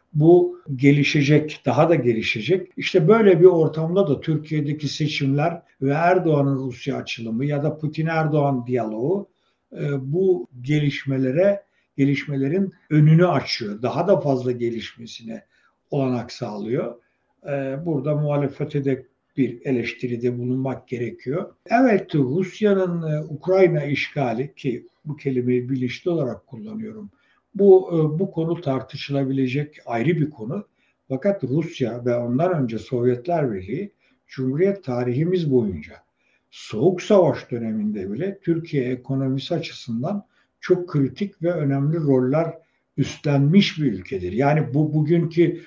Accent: native